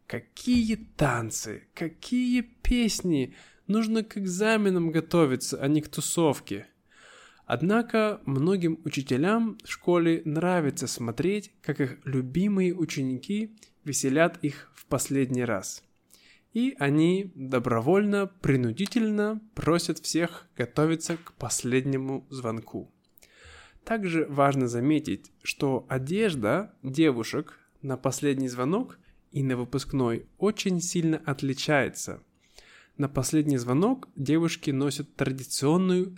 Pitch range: 135-180 Hz